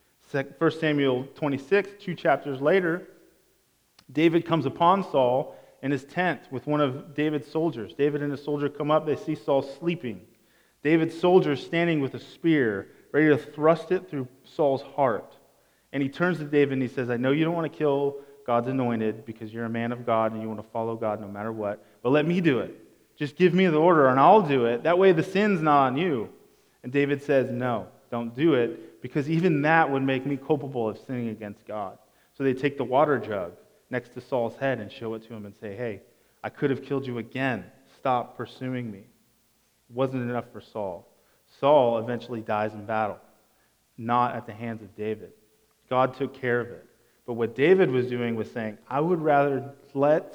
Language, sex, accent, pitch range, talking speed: English, male, American, 115-150 Hz, 205 wpm